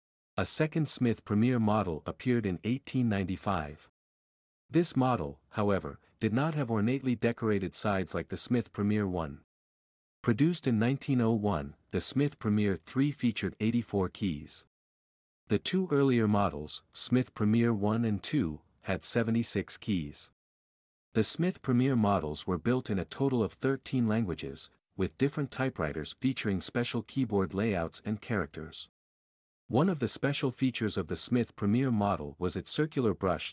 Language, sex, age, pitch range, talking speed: English, male, 50-69, 85-125 Hz, 140 wpm